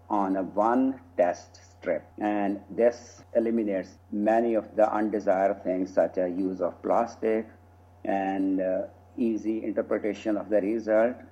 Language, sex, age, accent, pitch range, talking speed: English, male, 50-69, Indian, 95-110 Hz, 135 wpm